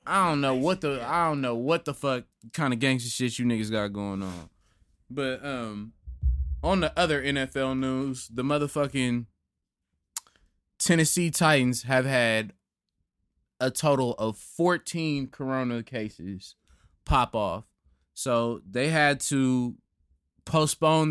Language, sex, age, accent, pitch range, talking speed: English, male, 20-39, American, 110-145 Hz, 130 wpm